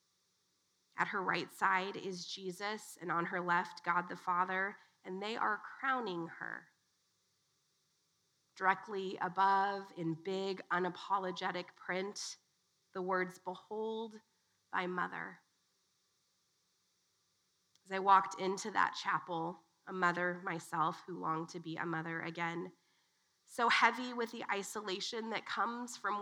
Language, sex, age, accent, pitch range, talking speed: English, female, 20-39, American, 180-220 Hz, 120 wpm